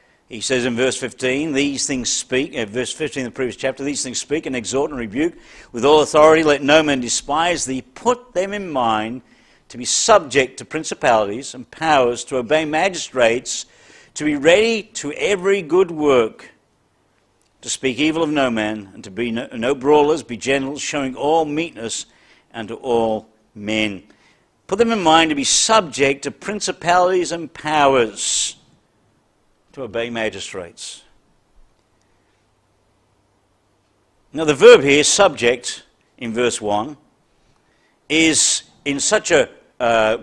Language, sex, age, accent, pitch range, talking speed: English, male, 60-79, British, 115-160 Hz, 145 wpm